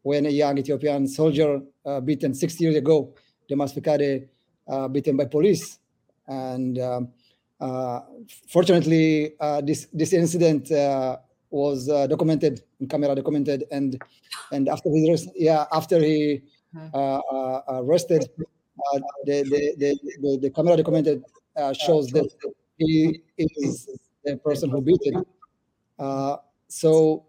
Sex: male